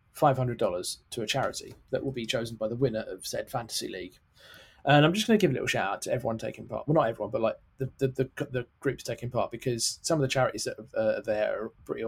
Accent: British